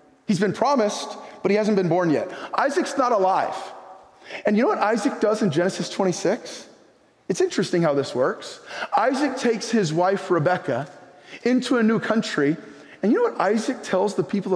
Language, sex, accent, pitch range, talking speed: English, male, American, 180-225 Hz, 175 wpm